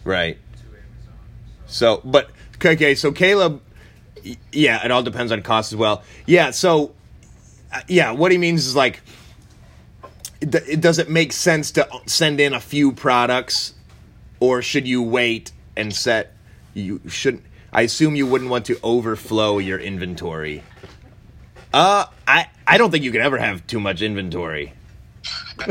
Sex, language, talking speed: male, English, 145 wpm